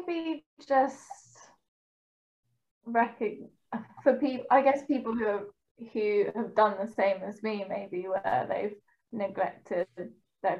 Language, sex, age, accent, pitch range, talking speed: English, female, 10-29, British, 195-225 Hz, 125 wpm